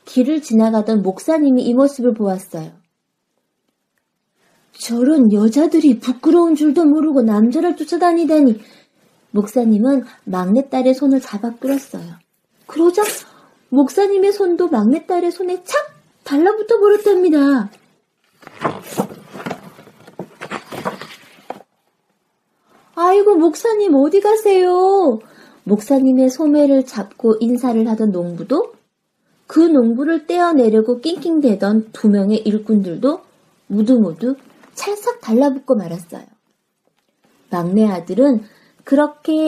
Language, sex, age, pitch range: Korean, female, 30-49, 210-300 Hz